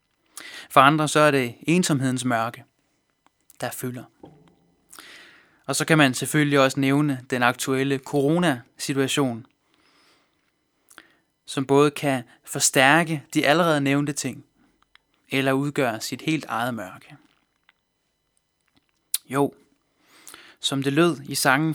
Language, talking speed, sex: Danish, 110 wpm, male